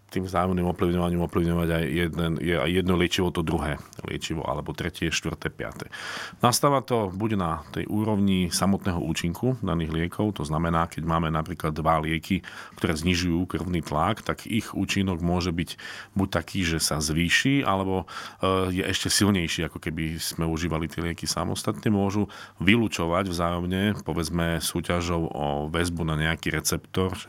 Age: 40-59